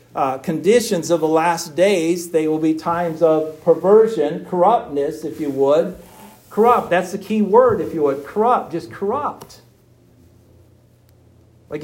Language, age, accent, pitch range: English, 50-69, American, 155-200 Hz